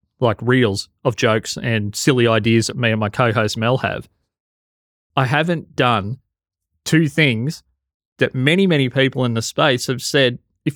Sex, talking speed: male, 160 wpm